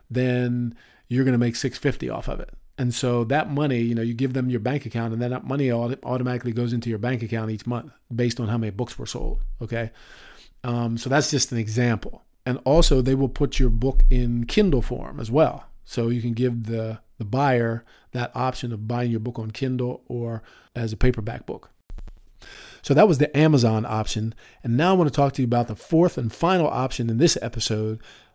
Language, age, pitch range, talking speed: English, 40-59, 115-140 Hz, 220 wpm